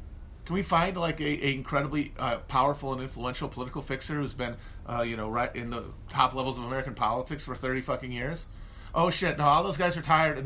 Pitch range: 100-150 Hz